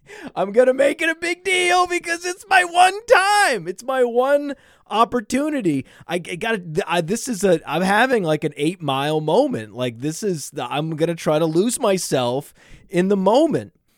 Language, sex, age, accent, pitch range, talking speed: English, male, 30-49, American, 150-235 Hz, 190 wpm